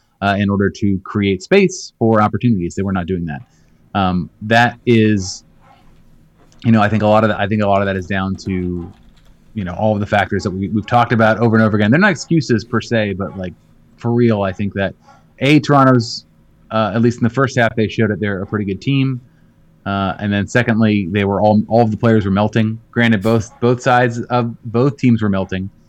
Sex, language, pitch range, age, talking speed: male, English, 95-120 Hz, 30-49, 230 wpm